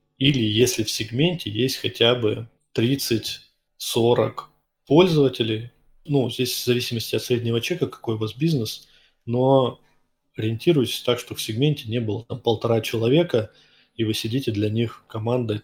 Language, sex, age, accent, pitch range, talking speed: Russian, male, 20-39, native, 110-130 Hz, 140 wpm